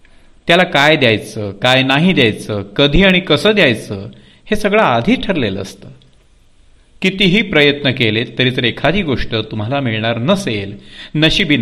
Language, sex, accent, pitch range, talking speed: Marathi, male, native, 110-165 Hz, 135 wpm